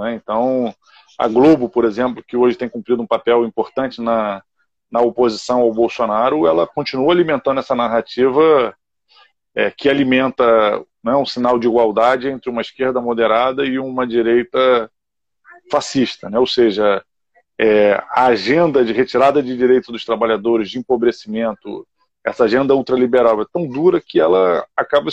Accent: Brazilian